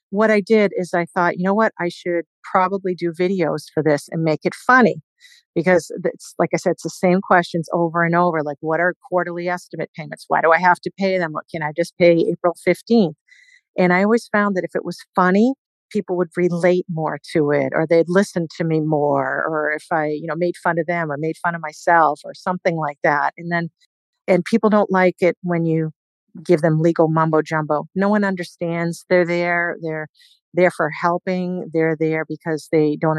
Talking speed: 215 wpm